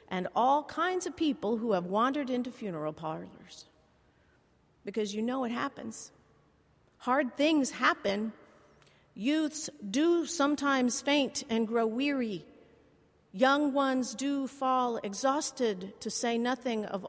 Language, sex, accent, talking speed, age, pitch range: English, female, American, 125 wpm, 50-69, 205-275 Hz